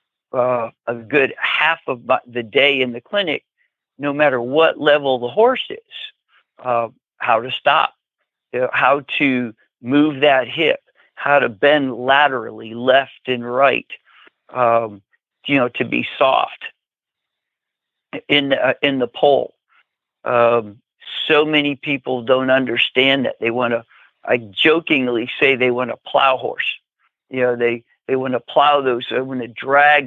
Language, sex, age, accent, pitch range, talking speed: English, male, 60-79, American, 125-145 Hz, 150 wpm